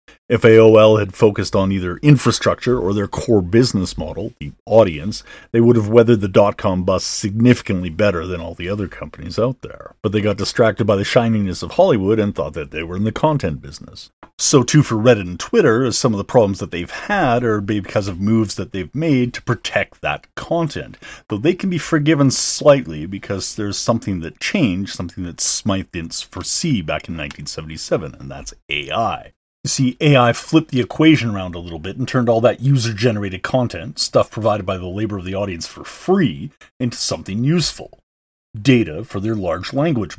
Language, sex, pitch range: English, male, 95-120 Hz